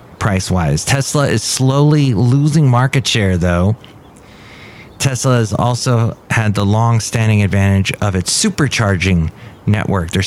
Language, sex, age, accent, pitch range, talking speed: English, male, 30-49, American, 105-130 Hz, 125 wpm